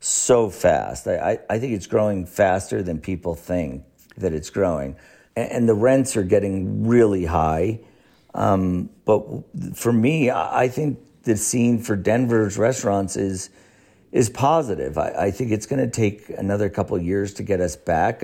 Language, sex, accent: English, male, American